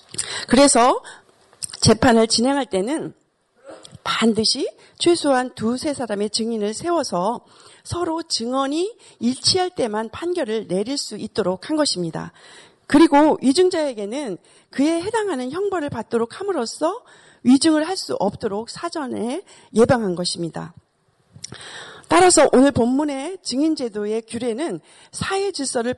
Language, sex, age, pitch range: Korean, female, 40-59, 220-325 Hz